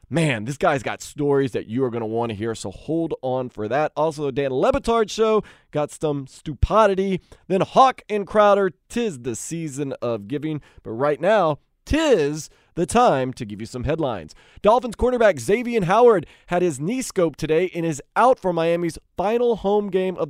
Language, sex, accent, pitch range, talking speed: English, male, American, 135-205 Hz, 190 wpm